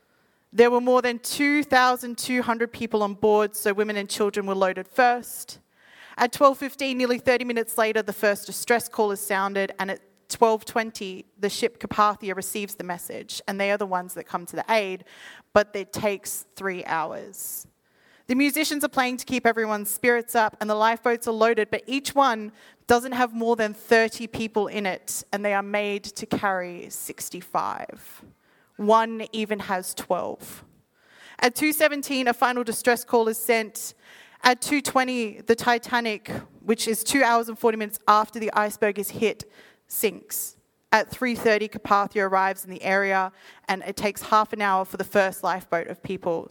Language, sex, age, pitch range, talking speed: English, female, 30-49, 195-235 Hz, 170 wpm